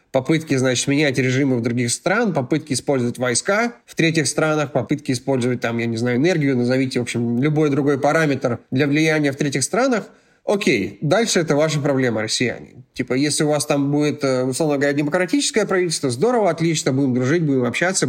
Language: Russian